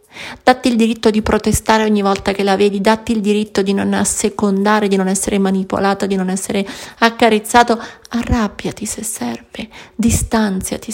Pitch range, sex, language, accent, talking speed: 200-240 Hz, female, Italian, native, 155 wpm